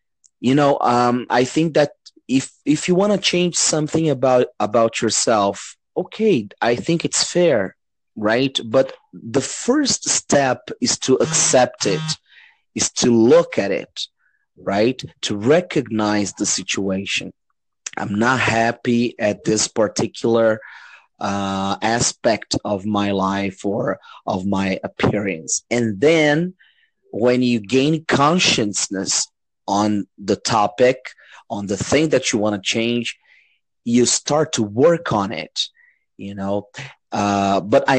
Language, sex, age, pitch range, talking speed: English, male, 30-49, 100-135 Hz, 130 wpm